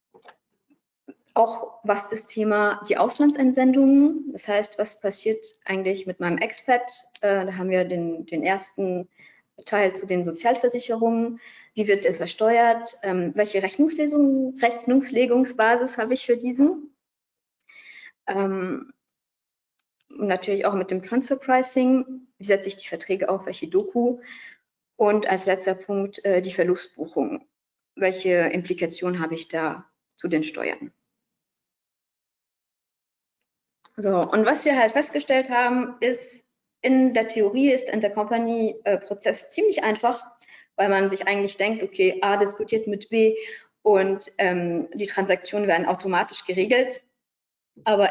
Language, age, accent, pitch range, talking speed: German, 30-49, German, 190-245 Hz, 130 wpm